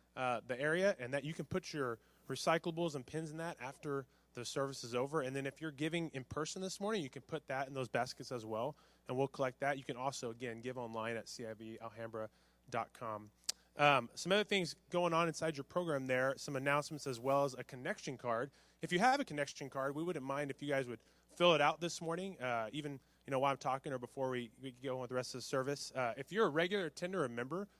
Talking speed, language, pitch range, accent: 240 wpm, English, 125-155 Hz, American